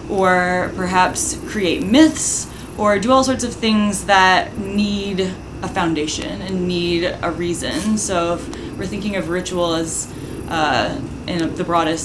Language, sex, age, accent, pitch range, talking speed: English, female, 20-39, American, 165-195 Hz, 145 wpm